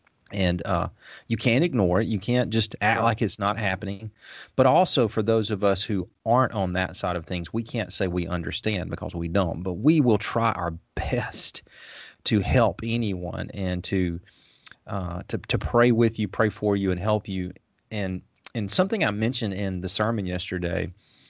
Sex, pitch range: male, 95-115 Hz